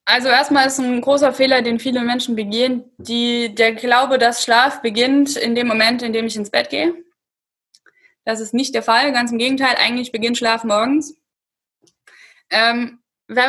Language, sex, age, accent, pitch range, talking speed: German, female, 20-39, German, 230-280 Hz, 175 wpm